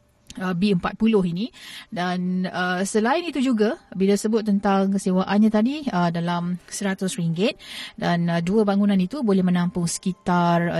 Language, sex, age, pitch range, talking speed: Malay, female, 30-49, 175-210 Hz, 130 wpm